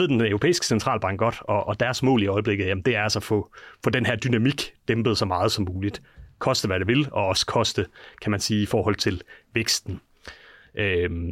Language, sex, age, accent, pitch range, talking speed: Danish, male, 30-49, native, 105-125 Hz, 220 wpm